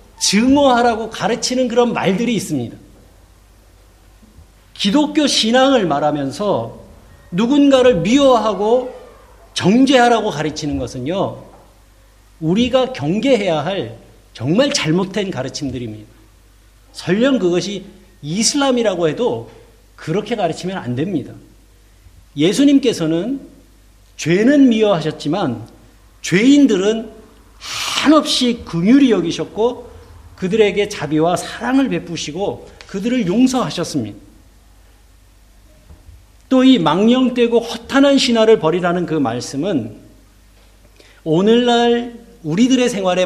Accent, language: native, Korean